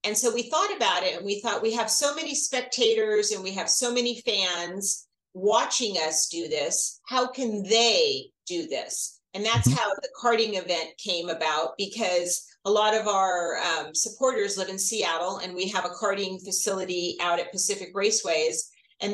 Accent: American